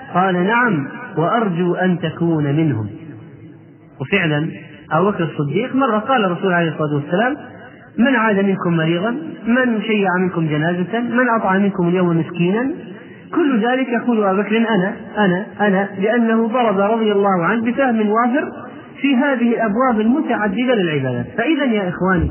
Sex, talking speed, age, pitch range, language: male, 130 wpm, 30-49, 165-235 Hz, Arabic